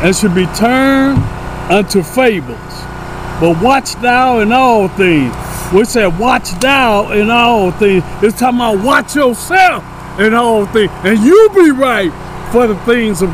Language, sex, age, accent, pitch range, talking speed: English, male, 60-79, American, 190-255 Hz, 155 wpm